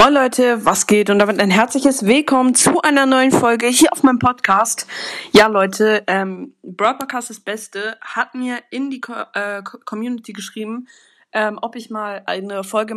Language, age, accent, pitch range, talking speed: German, 20-39, German, 195-240 Hz, 170 wpm